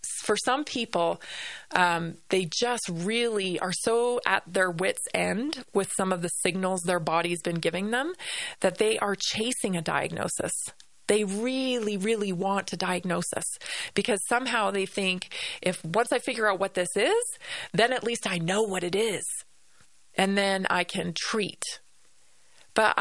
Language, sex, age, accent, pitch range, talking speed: English, female, 20-39, American, 175-230 Hz, 160 wpm